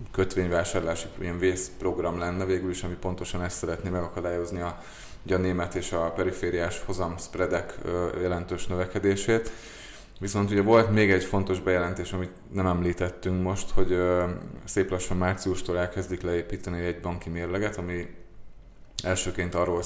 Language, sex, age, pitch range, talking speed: Hungarian, male, 20-39, 90-95 Hz, 135 wpm